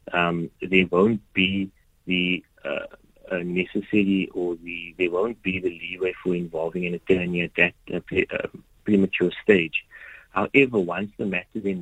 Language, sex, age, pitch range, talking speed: English, male, 30-49, 85-95 Hz, 155 wpm